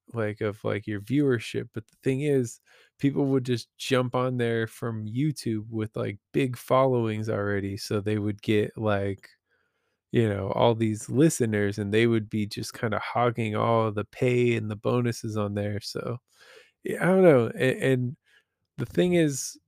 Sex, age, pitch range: male, 20-39, 110-130 Hz